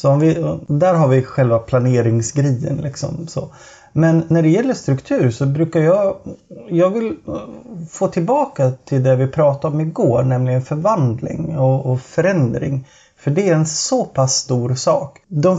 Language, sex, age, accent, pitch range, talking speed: Swedish, male, 30-49, native, 130-160 Hz, 160 wpm